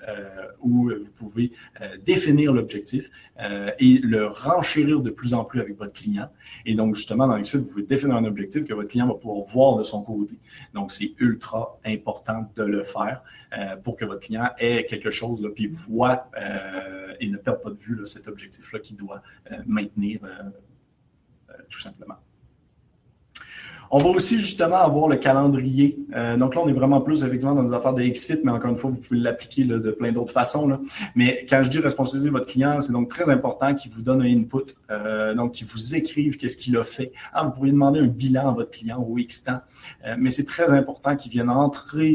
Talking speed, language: 220 wpm, French